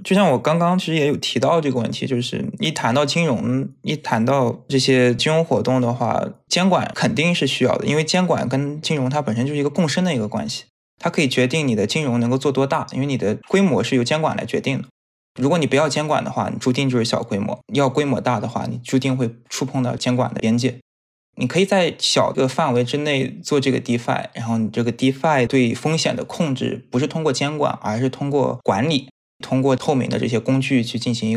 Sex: male